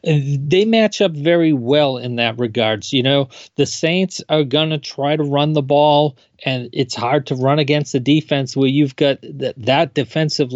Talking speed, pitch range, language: 180 wpm, 135-165 Hz, English